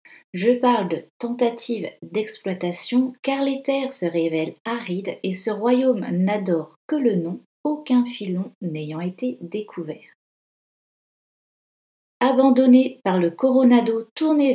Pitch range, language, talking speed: 180-245 Hz, French, 115 wpm